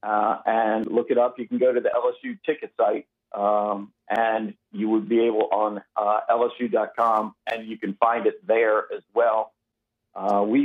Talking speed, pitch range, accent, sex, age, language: 180 wpm, 110-125 Hz, American, male, 50-69, English